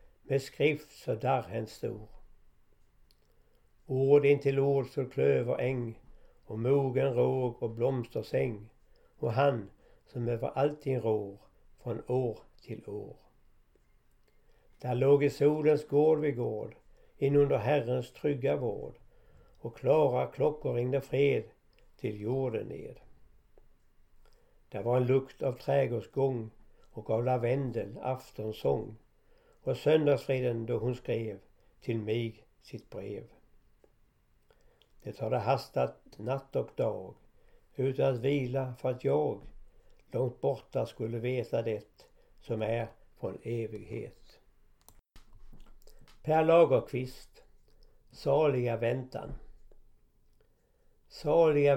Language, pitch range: Swedish, 115-140 Hz